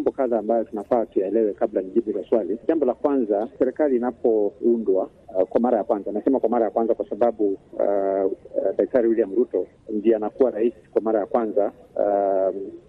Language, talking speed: Swahili, 175 wpm